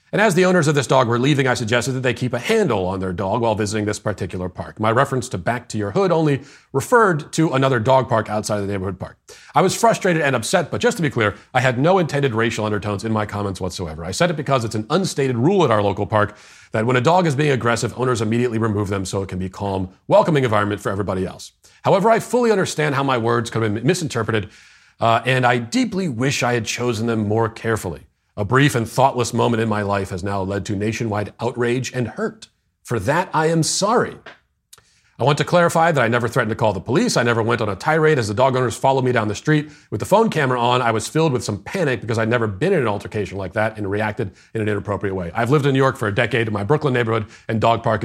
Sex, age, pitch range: male, 40-59, 105-140 Hz